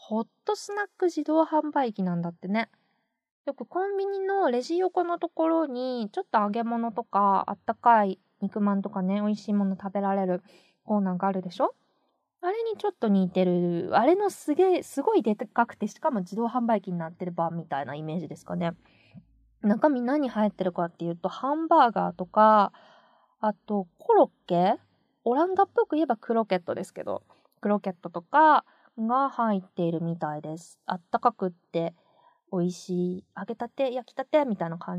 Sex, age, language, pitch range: female, 20-39, Japanese, 195-310 Hz